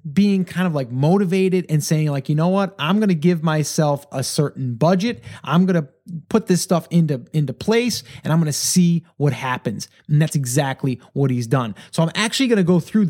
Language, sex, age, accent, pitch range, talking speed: English, male, 30-49, American, 145-185 Hz, 220 wpm